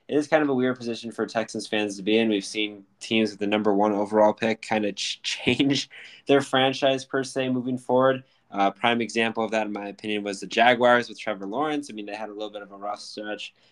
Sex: male